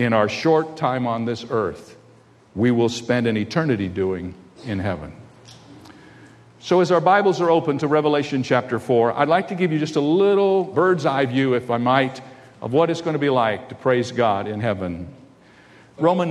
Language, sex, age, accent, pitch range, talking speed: English, male, 50-69, American, 120-170 Hz, 190 wpm